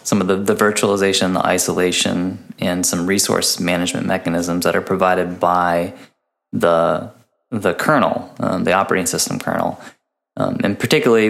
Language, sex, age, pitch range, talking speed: English, male, 20-39, 90-110 Hz, 145 wpm